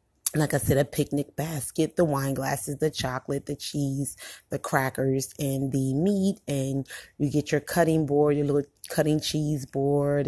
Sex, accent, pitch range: female, American, 135-150 Hz